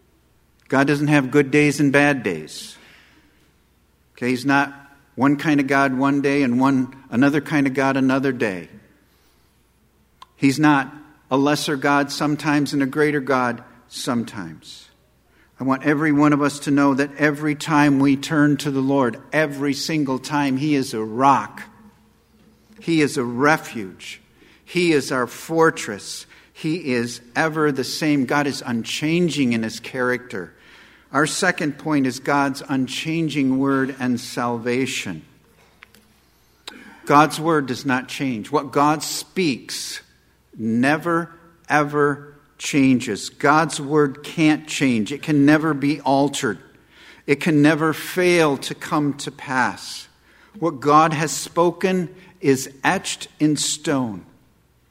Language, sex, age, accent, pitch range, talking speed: English, male, 50-69, American, 130-150 Hz, 135 wpm